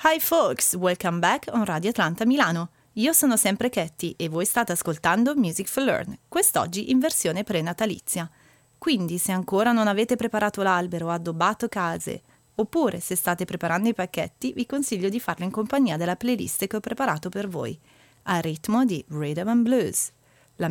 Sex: female